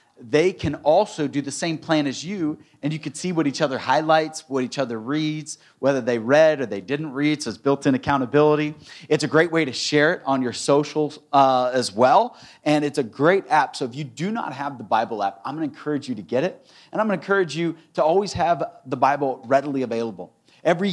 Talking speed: 230 wpm